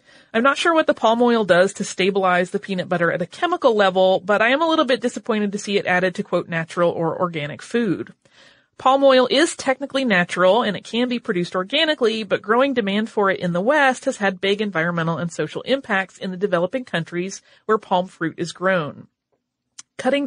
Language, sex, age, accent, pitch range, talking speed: English, female, 30-49, American, 180-245 Hz, 205 wpm